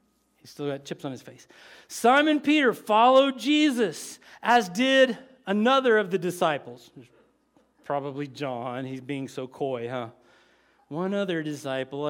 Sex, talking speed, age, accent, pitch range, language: male, 135 wpm, 40-59, American, 185-260 Hz, English